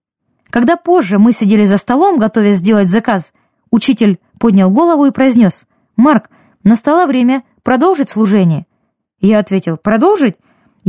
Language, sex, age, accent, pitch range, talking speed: Russian, female, 20-39, native, 215-290 Hz, 120 wpm